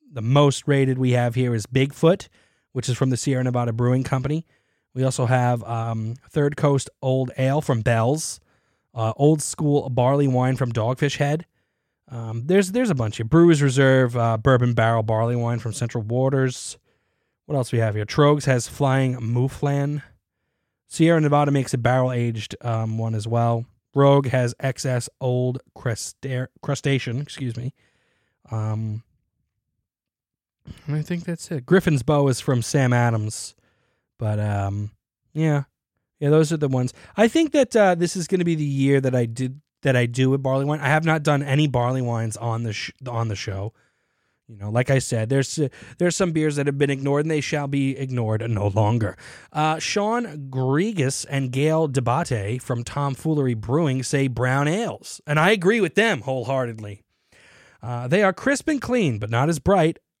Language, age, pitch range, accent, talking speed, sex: English, 20-39, 120-145 Hz, American, 175 wpm, male